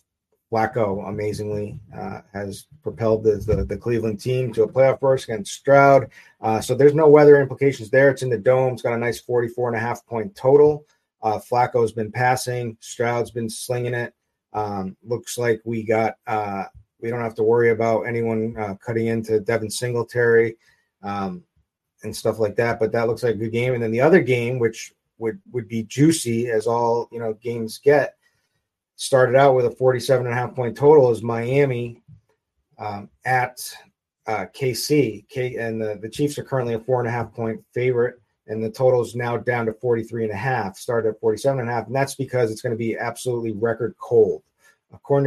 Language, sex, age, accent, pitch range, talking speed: English, male, 30-49, American, 110-125 Hz, 200 wpm